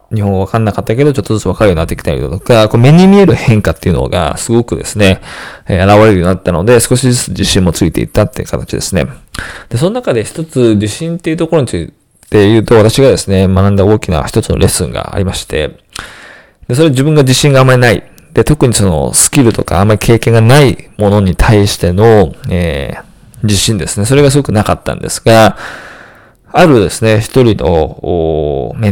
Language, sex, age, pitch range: Japanese, male, 20-39, 95-140 Hz